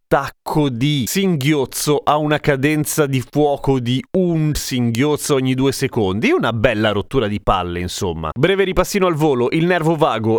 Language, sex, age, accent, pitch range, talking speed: Italian, male, 30-49, native, 120-155 Hz, 155 wpm